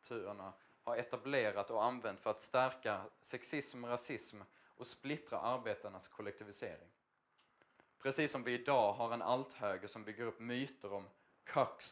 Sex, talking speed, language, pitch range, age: male, 140 wpm, Swedish, 110-130 Hz, 20-39